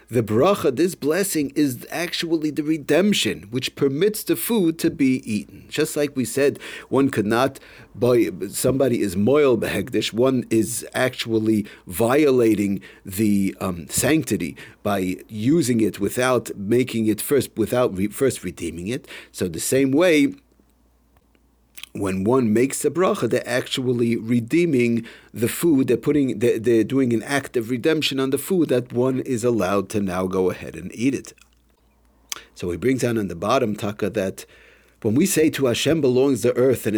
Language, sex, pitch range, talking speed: English, male, 110-145 Hz, 160 wpm